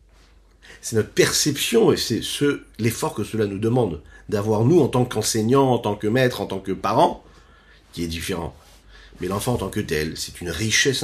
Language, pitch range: French, 95-150 Hz